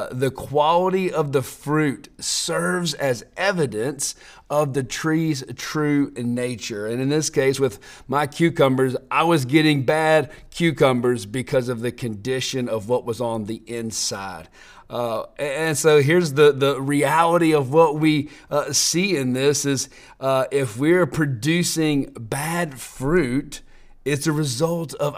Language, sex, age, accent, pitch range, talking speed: English, male, 40-59, American, 130-160 Hz, 145 wpm